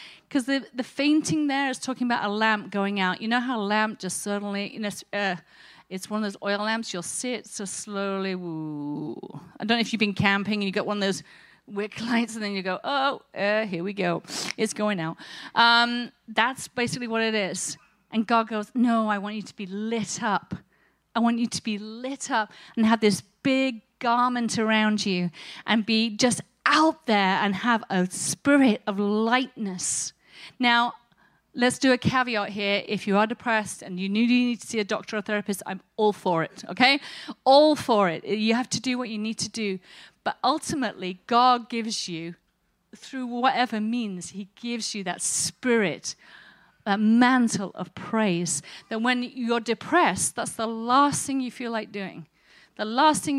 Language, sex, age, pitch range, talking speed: English, female, 40-59, 200-245 Hz, 190 wpm